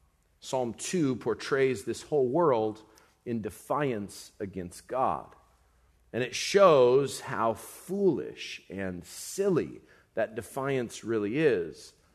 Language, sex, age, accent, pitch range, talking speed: English, male, 40-59, American, 105-135 Hz, 105 wpm